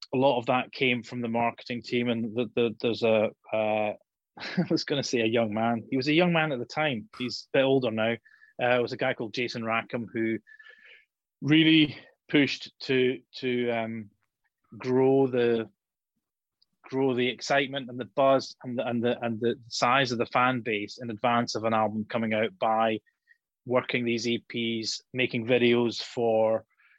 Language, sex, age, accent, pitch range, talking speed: English, male, 30-49, British, 115-130 Hz, 185 wpm